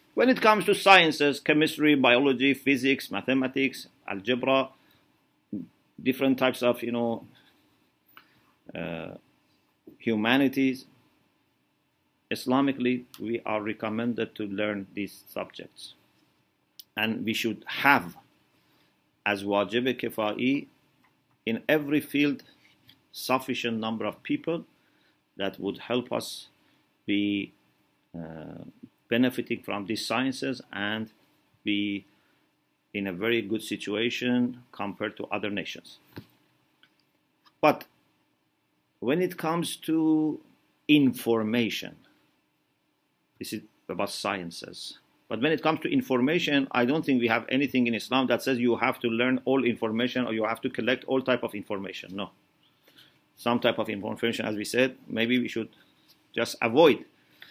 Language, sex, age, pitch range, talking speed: English, male, 50-69, 110-135 Hz, 120 wpm